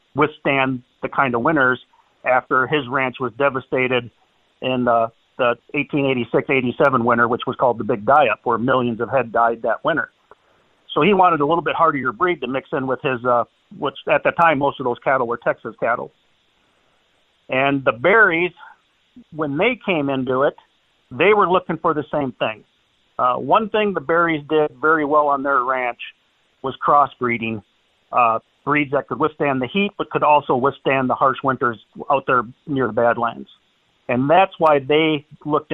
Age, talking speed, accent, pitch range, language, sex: 50-69, 175 wpm, American, 125-155 Hz, English, male